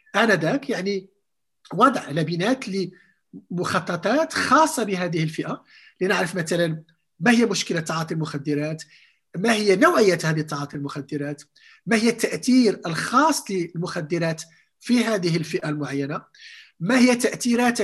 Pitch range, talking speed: 160-230 Hz, 110 wpm